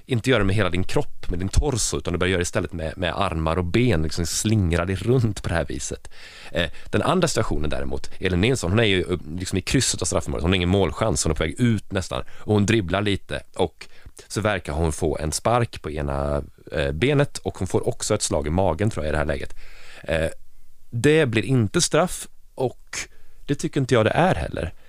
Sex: male